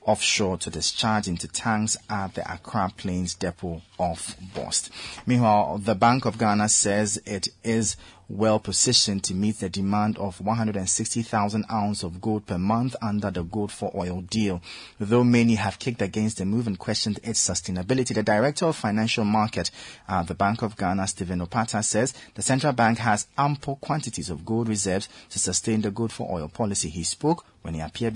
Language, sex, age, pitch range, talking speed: English, male, 30-49, 95-120 Hz, 180 wpm